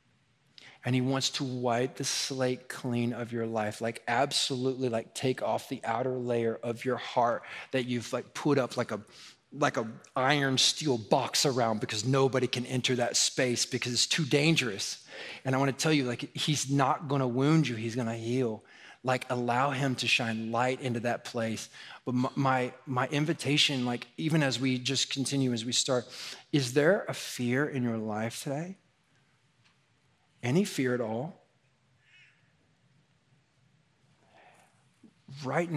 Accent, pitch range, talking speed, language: American, 120-145 Hz, 160 wpm, English